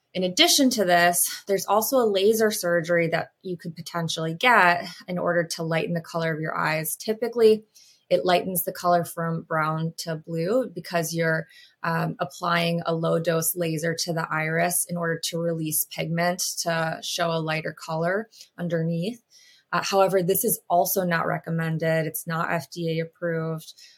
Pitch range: 165-185 Hz